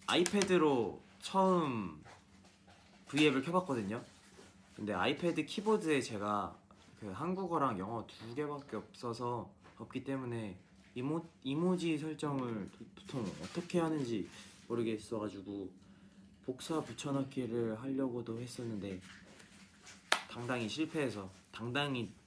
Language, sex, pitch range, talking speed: English, male, 105-140 Hz, 80 wpm